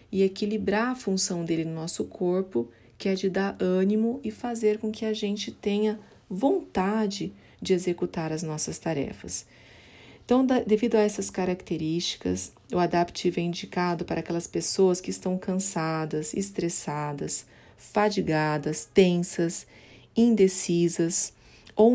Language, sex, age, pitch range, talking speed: Portuguese, female, 40-59, 160-205 Hz, 130 wpm